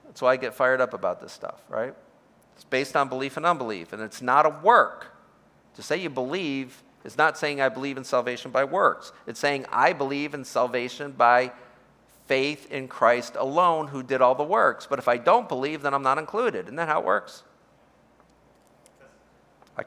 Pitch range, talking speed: 105-135 Hz, 195 wpm